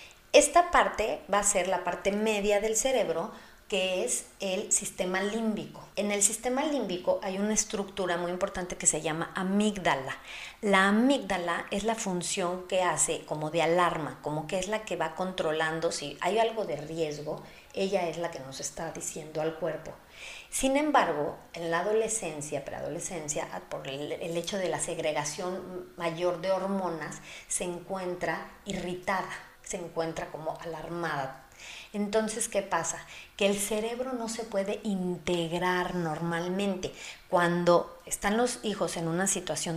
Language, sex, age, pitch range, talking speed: Spanish, female, 40-59, 165-200 Hz, 150 wpm